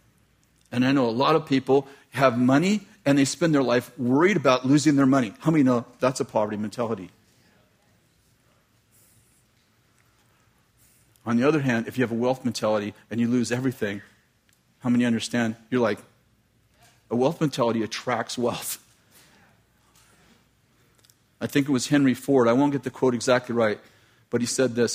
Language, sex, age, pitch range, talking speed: English, male, 40-59, 115-145 Hz, 160 wpm